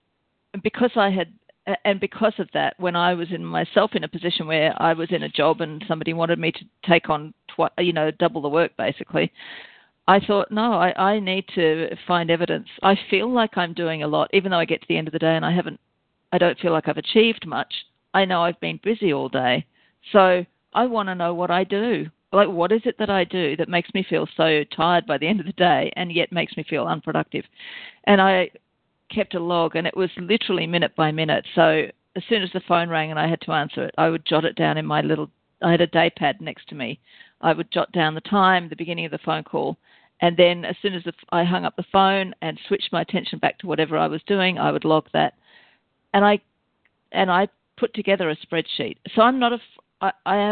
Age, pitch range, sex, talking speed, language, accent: 40-59, 165-195 Hz, female, 240 wpm, English, Australian